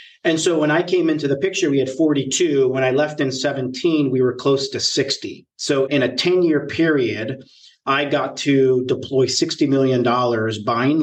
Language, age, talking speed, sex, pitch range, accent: English, 40-59, 180 wpm, male, 125-150 Hz, American